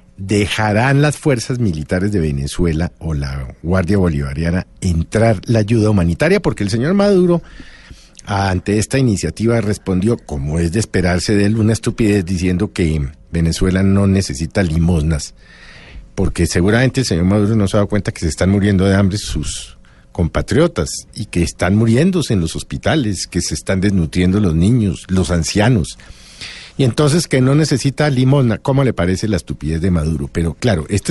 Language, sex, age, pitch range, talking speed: Spanish, male, 50-69, 85-120 Hz, 165 wpm